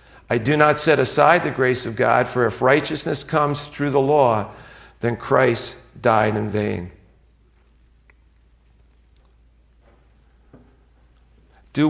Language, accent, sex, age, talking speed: English, American, male, 50-69, 110 wpm